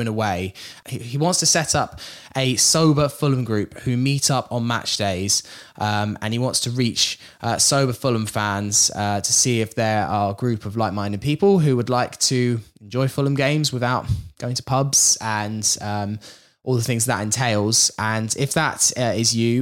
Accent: British